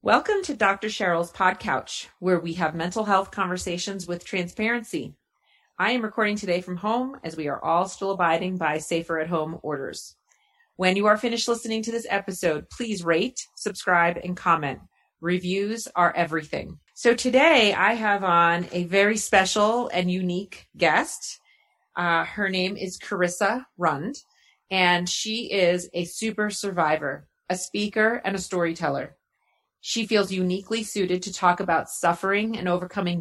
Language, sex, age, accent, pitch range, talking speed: English, female, 30-49, American, 175-205 Hz, 150 wpm